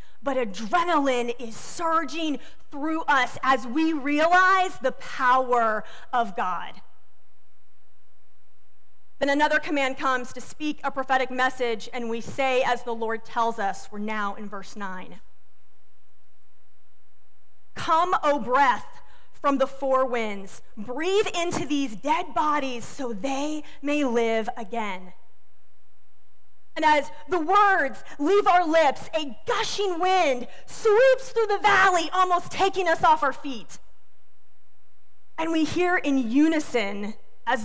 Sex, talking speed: female, 125 wpm